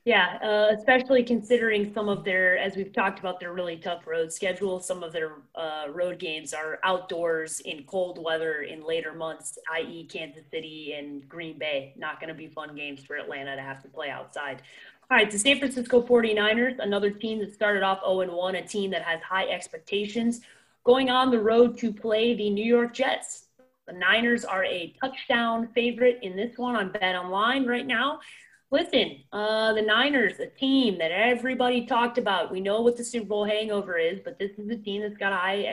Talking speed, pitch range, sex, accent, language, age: 200 wpm, 175-240 Hz, female, American, English, 30-49